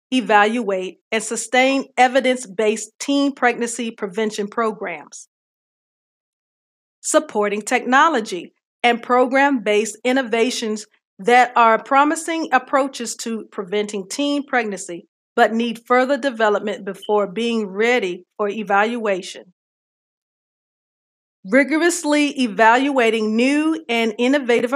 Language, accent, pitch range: English, American, 215-265 Hz